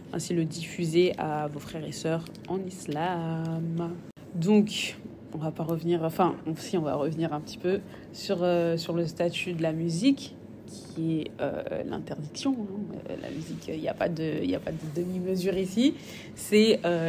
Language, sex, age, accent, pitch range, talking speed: French, female, 20-39, French, 160-190 Hz, 170 wpm